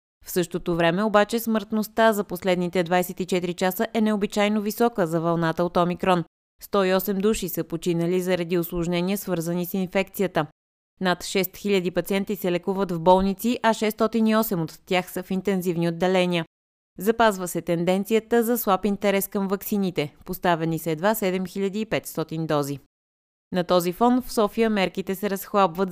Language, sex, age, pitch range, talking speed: Bulgarian, female, 20-39, 170-205 Hz, 140 wpm